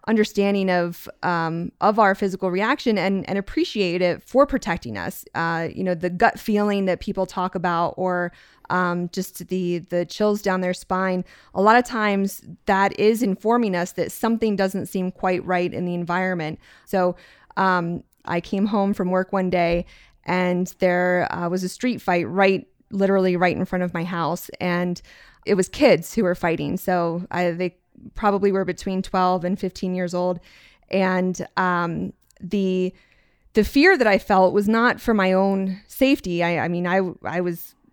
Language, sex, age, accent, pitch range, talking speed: English, female, 20-39, American, 175-200 Hz, 175 wpm